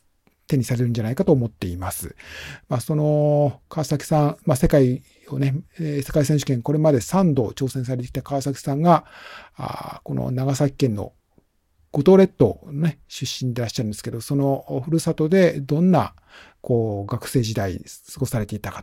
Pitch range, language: 120-155 Hz, Japanese